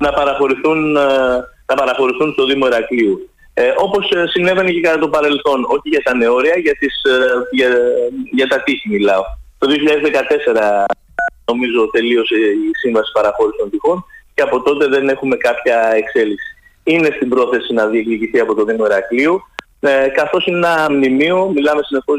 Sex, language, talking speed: male, Greek, 150 wpm